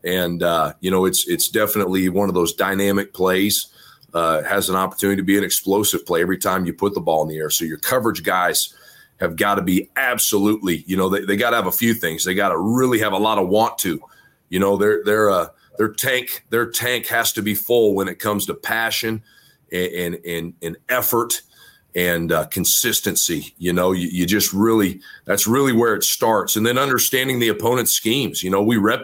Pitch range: 95-120 Hz